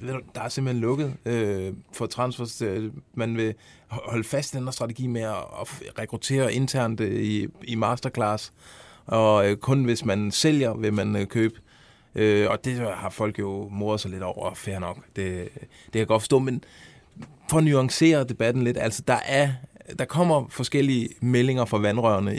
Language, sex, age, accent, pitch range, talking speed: Danish, male, 20-39, native, 105-130 Hz, 180 wpm